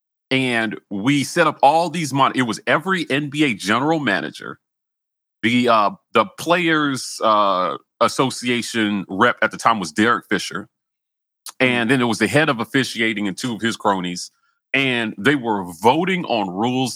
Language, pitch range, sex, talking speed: English, 110-150 Hz, male, 160 wpm